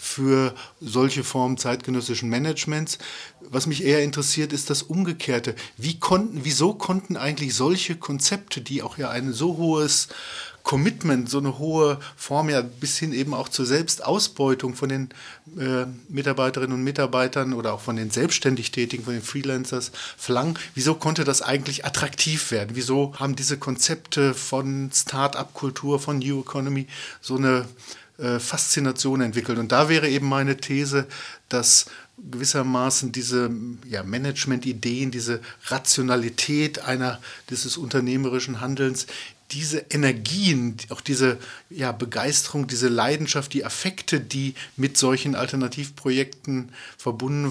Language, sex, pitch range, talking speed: German, male, 125-145 Hz, 130 wpm